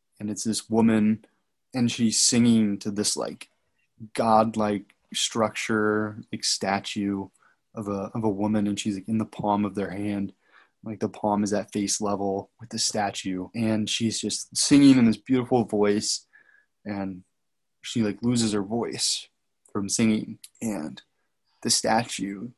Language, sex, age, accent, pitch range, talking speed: English, male, 20-39, American, 105-120 Hz, 150 wpm